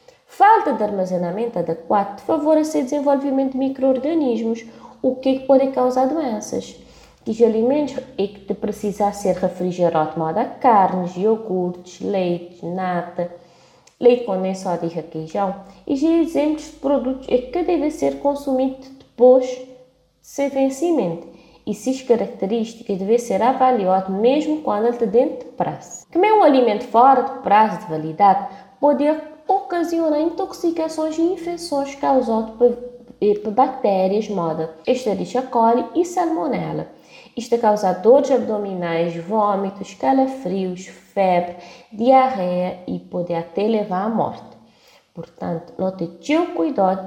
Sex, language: female, Portuguese